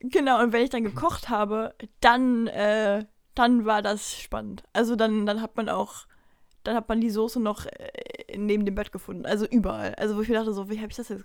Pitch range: 210-255 Hz